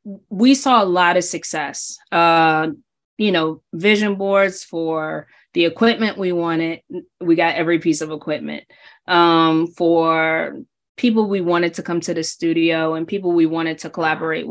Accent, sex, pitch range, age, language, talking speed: American, female, 165-215 Hz, 20-39, English, 155 wpm